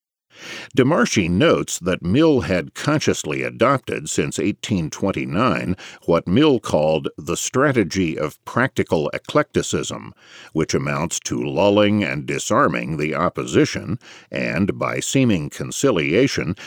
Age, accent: 50-69, American